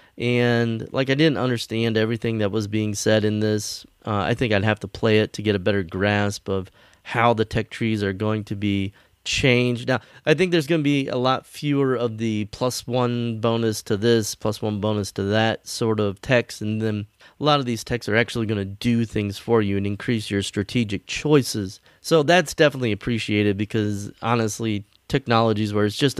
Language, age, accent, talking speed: English, 30-49, American, 205 wpm